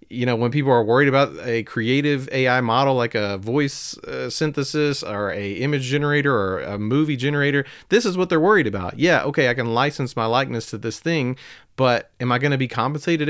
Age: 40-59